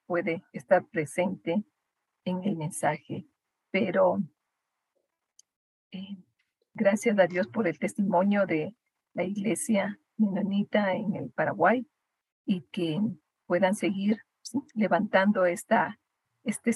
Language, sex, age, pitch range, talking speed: Spanish, female, 50-69, 180-210 Hz, 105 wpm